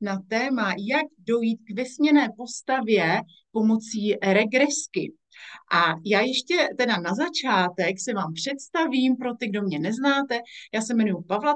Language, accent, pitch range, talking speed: Czech, native, 195-255 Hz, 140 wpm